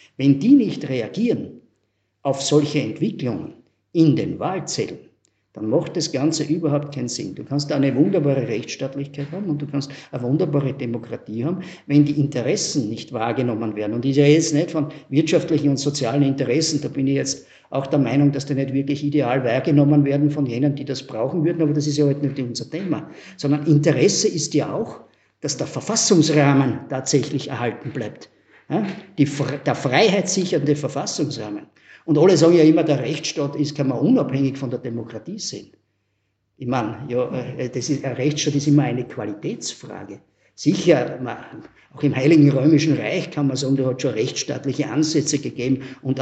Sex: male